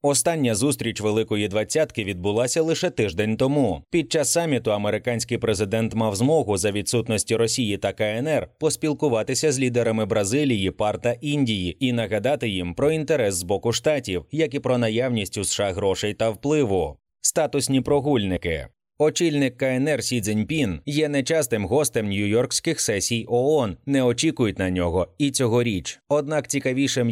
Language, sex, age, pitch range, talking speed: Ukrainian, male, 20-39, 110-145 Hz, 140 wpm